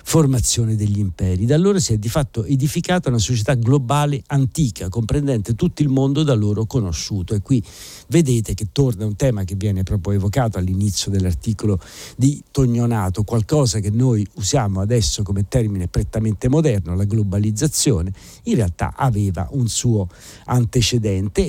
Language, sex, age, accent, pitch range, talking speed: Italian, male, 50-69, native, 105-140 Hz, 150 wpm